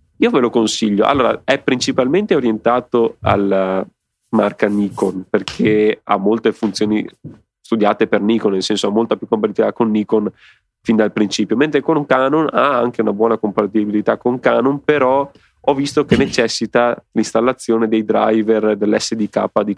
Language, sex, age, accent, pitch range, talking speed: Italian, male, 30-49, native, 105-115 Hz, 150 wpm